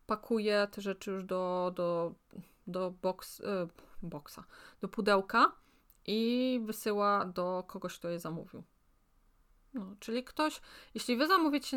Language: Polish